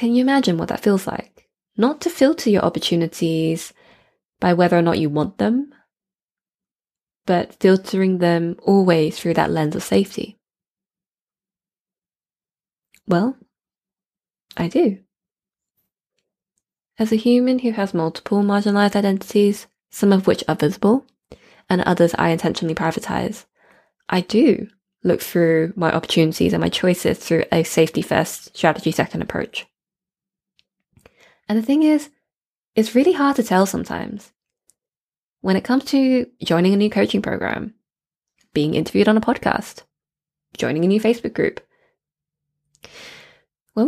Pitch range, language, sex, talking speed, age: 165-220 Hz, English, female, 125 wpm, 20-39